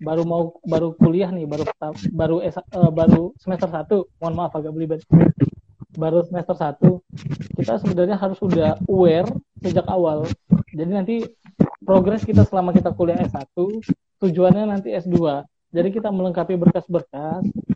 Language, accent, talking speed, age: Indonesian, native, 135 wpm, 20-39